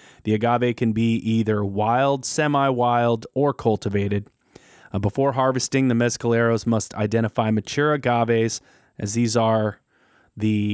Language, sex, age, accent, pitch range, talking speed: English, male, 20-39, American, 110-130 Hz, 125 wpm